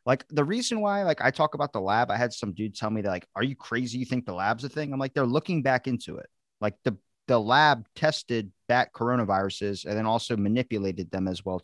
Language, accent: English, American